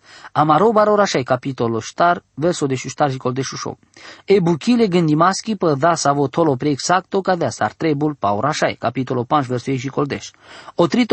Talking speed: 155 wpm